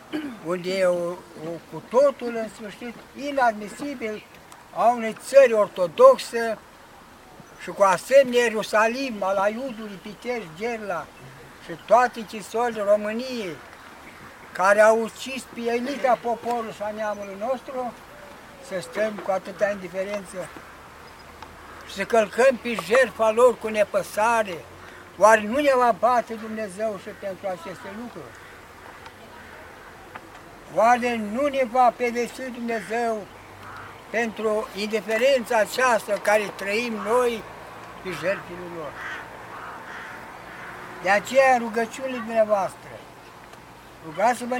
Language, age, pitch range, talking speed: Romanian, 60-79, 200-245 Hz, 100 wpm